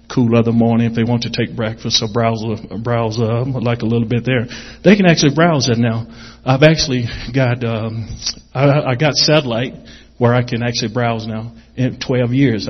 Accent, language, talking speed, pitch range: American, English, 200 wpm, 115-135 Hz